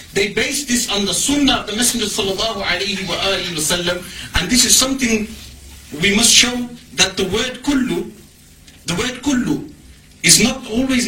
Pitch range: 175-235 Hz